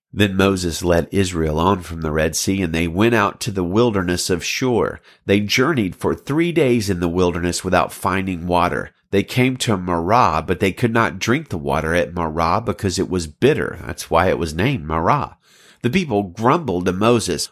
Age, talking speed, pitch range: 40-59, 195 wpm, 85-115 Hz